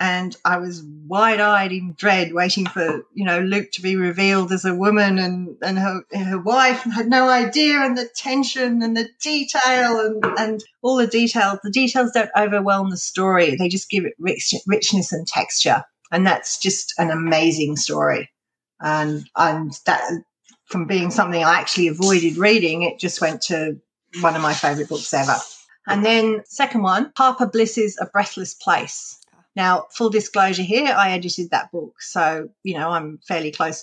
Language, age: English, 40-59